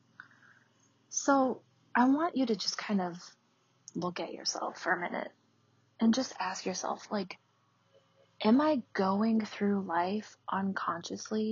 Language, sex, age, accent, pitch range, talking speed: English, female, 20-39, American, 175-225 Hz, 130 wpm